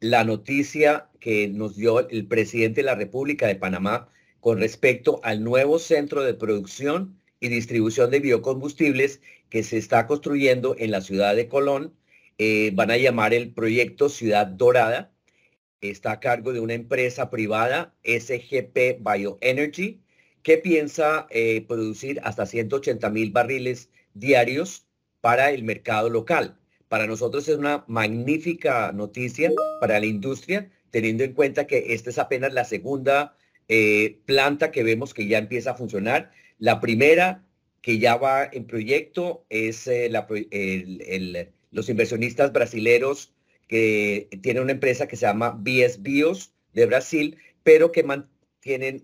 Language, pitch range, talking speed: English, 110-140 Hz, 145 wpm